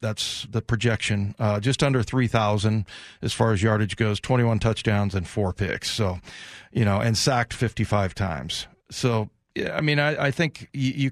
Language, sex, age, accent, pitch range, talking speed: English, male, 40-59, American, 110-140 Hz, 165 wpm